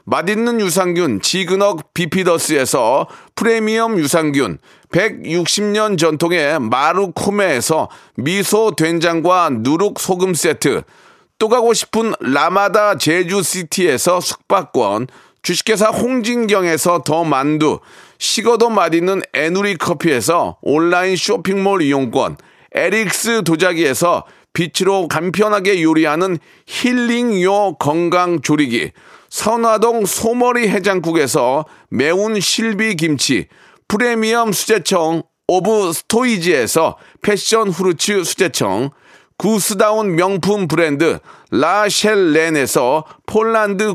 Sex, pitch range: male, 175-220 Hz